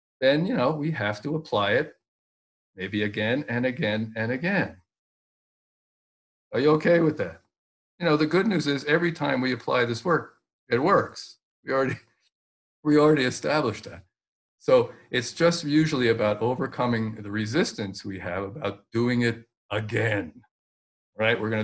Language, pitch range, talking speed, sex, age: English, 105-135 Hz, 155 wpm, male, 50-69